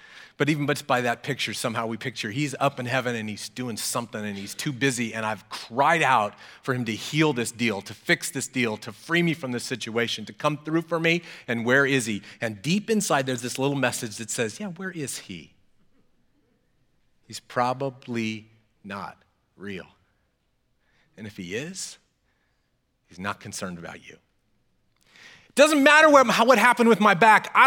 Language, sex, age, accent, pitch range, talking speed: English, male, 30-49, American, 130-205 Hz, 180 wpm